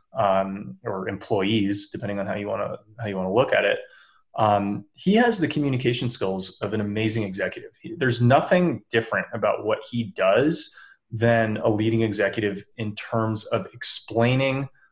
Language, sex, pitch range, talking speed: English, male, 110-135 Hz, 165 wpm